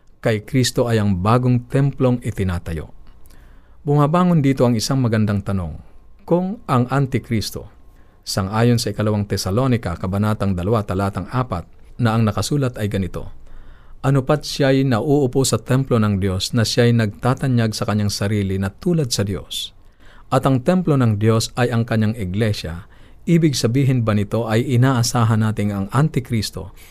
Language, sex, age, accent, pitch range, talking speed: Filipino, male, 50-69, native, 95-125 Hz, 145 wpm